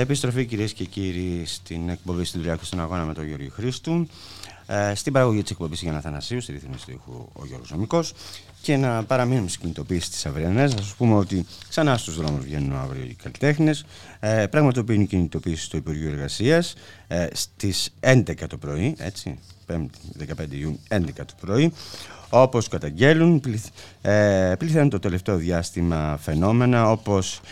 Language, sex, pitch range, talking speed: Greek, male, 80-105 Hz, 155 wpm